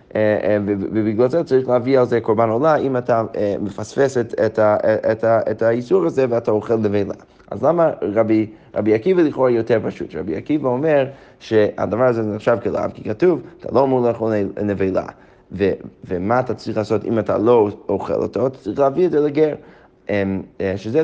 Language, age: Hebrew, 20-39